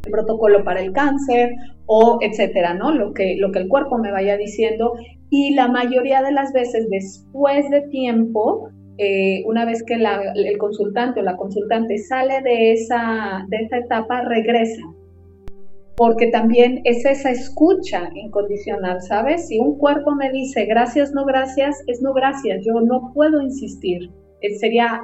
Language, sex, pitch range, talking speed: Spanish, female, 195-245 Hz, 160 wpm